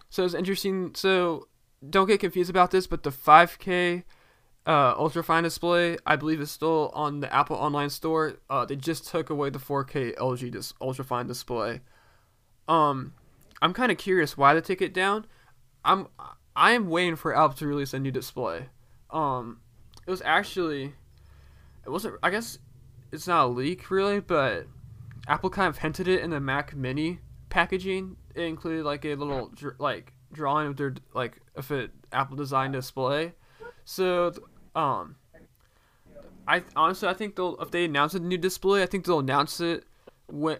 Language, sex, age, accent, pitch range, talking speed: English, male, 10-29, American, 140-175 Hz, 175 wpm